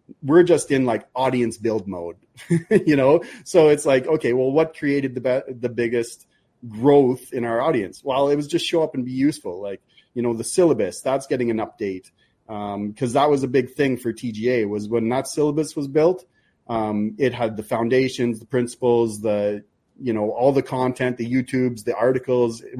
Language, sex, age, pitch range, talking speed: English, male, 30-49, 120-150 Hz, 195 wpm